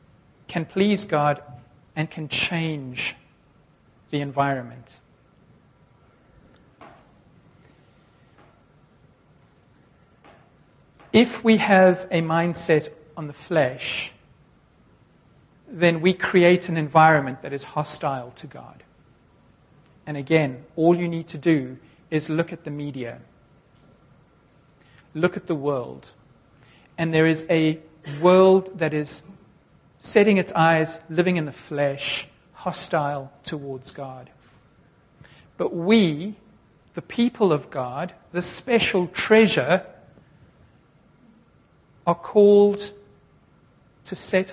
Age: 50-69